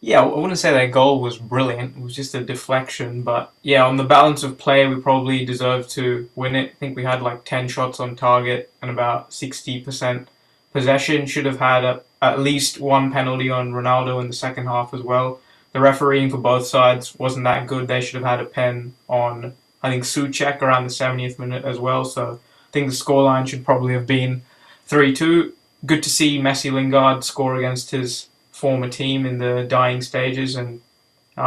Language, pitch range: English, 125-135 Hz